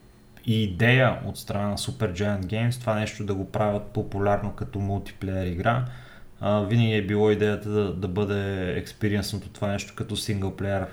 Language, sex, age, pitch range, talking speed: Bulgarian, male, 20-39, 100-120 Hz, 165 wpm